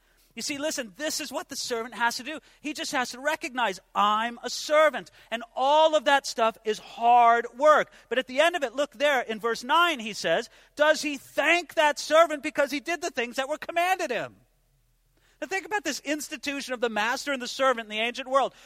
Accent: American